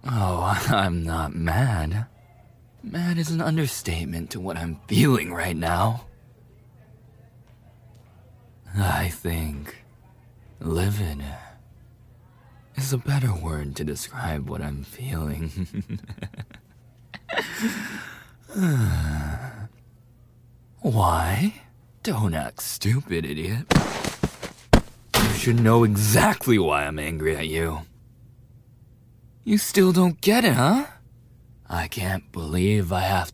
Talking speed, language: 90 wpm, English